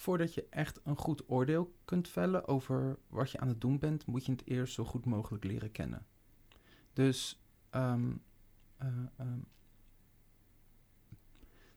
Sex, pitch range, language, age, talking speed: male, 110-135 Hz, Dutch, 40-59, 135 wpm